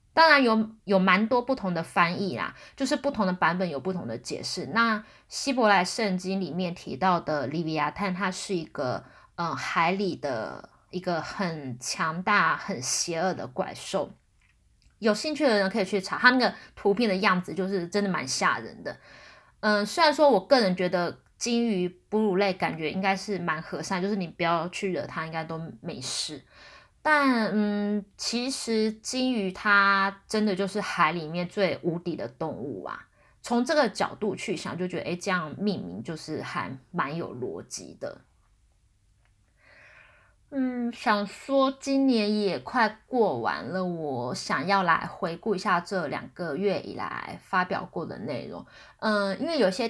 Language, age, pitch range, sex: Chinese, 20-39, 175-220 Hz, female